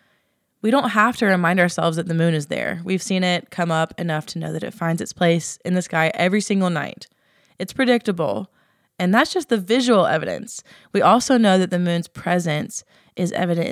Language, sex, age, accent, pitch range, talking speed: English, female, 20-39, American, 170-200 Hz, 205 wpm